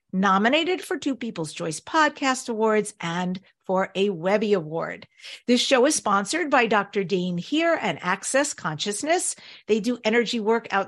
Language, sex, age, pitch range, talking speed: English, female, 50-69, 185-265 Hz, 155 wpm